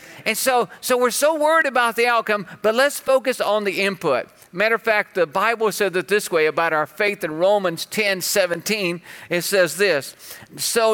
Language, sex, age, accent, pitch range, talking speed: English, male, 50-69, American, 185-230 Hz, 190 wpm